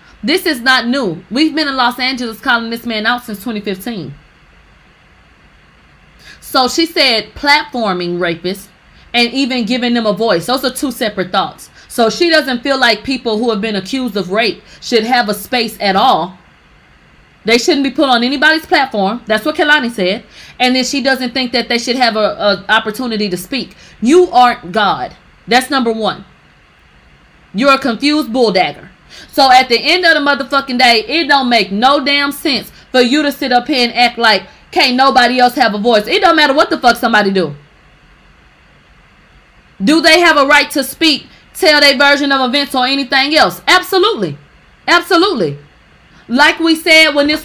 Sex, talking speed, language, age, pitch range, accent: female, 180 wpm, English, 30-49, 225-295 Hz, American